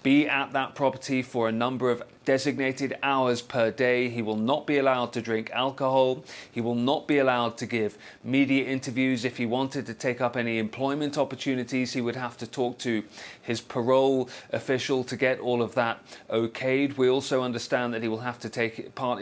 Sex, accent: male, British